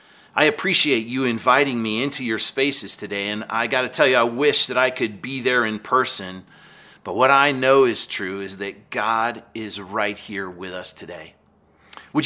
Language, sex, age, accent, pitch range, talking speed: English, male, 40-59, American, 110-140 Hz, 195 wpm